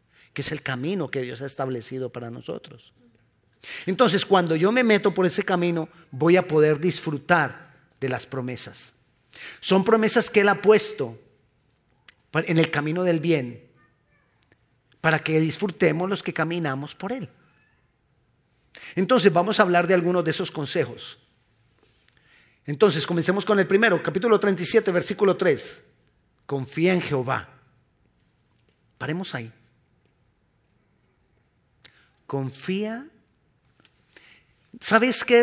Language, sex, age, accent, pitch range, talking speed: Spanish, male, 40-59, Mexican, 135-195 Hz, 120 wpm